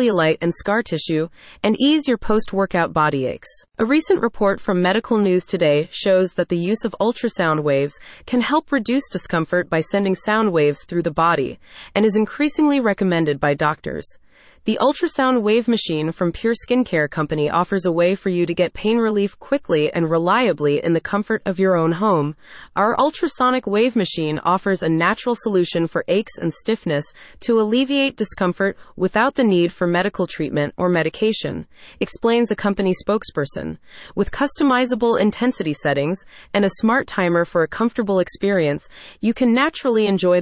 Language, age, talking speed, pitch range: English, 30-49, 165 wpm, 170-230 Hz